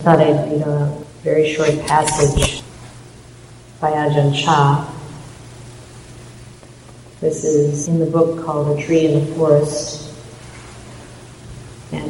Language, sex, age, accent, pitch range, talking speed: English, female, 50-69, American, 125-165 Hz, 110 wpm